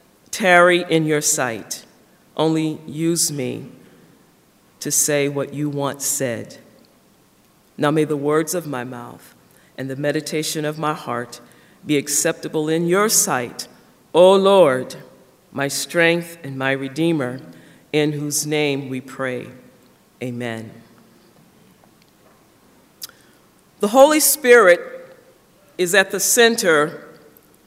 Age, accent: 50-69, American